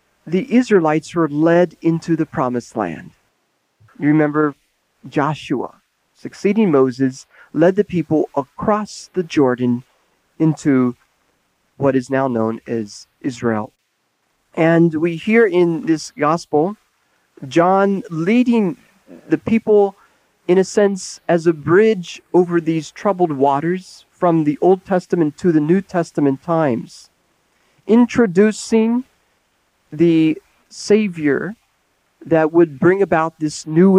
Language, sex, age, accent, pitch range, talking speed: English, male, 40-59, American, 145-190 Hz, 115 wpm